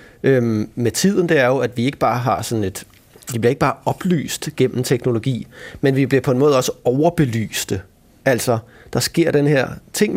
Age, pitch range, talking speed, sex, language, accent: 30-49, 115-145 Hz, 200 wpm, male, Danish, native